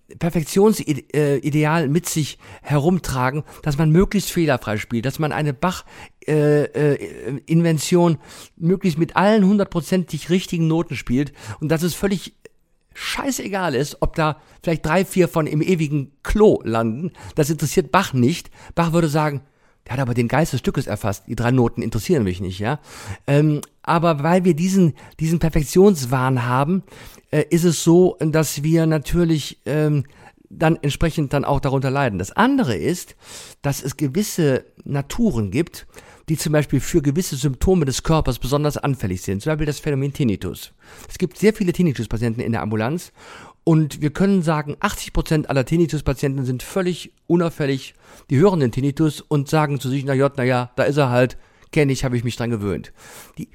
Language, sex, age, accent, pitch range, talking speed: German, male, 50-69, German, 135-170 Hz, 165 wpm